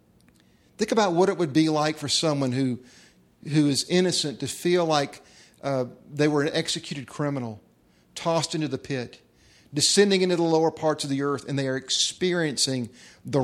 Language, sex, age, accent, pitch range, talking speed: English, male, 50-69, American, 130-175 Hz, 175 wpm